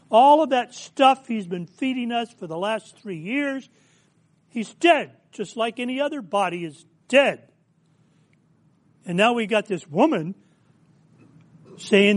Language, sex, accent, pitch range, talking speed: English, male, American, 160-225 Hz, 145 wpm